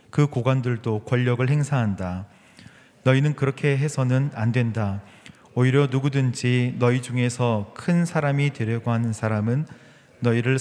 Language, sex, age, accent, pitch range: Korean, male, 30-49, native, 115-140 Hz